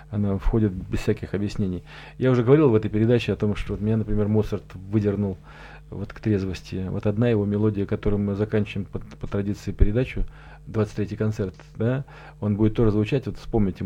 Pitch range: 100-125 Hz